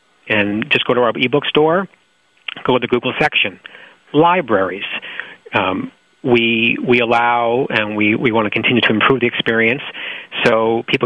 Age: 40-59